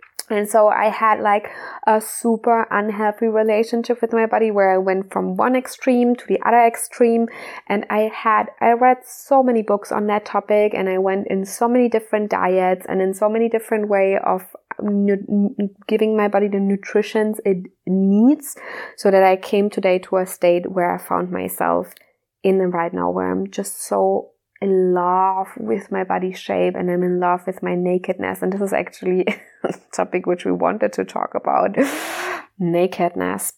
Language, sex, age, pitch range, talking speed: English, female, 20-39, 175-215 Hz, 185 wpm